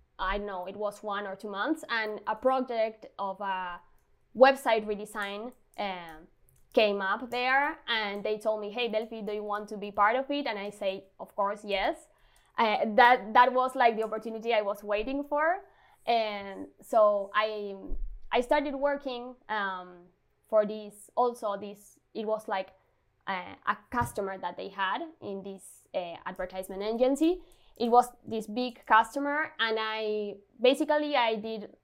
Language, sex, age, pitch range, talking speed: English, female, 20-39, 200-245 Hz, 160 wpm